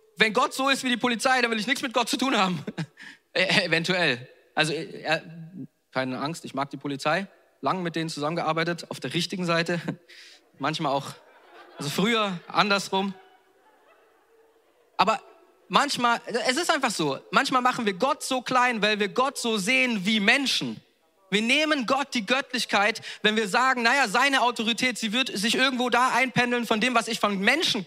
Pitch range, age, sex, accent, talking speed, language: 195-270 Hz, 30-49, male, German, 170 wpm, German